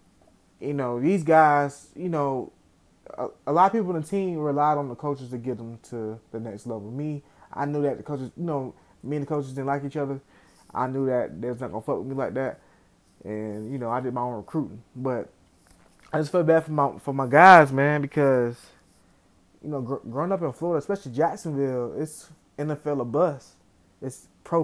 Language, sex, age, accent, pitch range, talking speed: English, male, 20-39, American, 115-155 Hz, 210 wpm